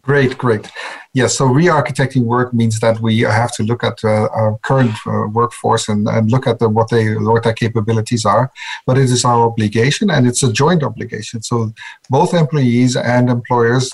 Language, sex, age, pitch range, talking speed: English, male, 50-69, 110-130 Hz, 190 wpm